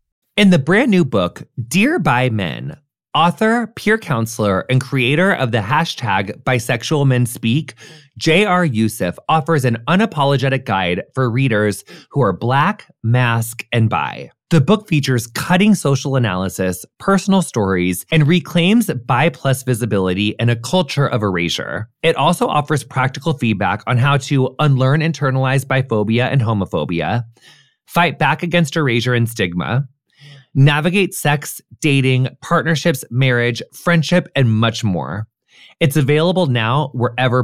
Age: 20-39